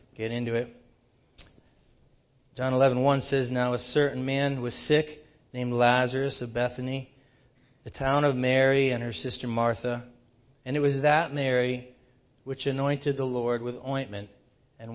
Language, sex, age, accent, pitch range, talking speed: English, male, 40-59, American, 120-140 Hz, 150 wpm